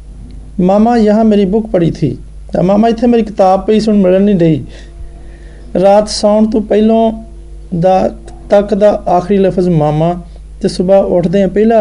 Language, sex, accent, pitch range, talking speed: Hindi, male, native, 150-195 Hz, 130 wpm